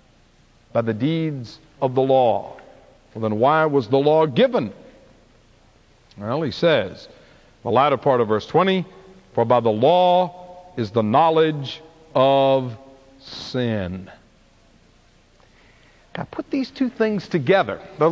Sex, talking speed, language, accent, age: male, 125 wpm, English, American, 60-79